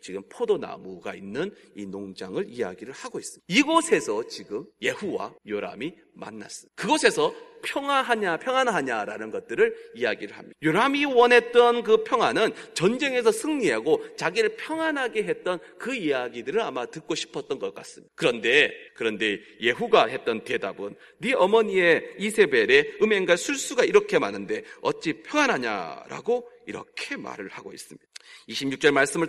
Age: 40-59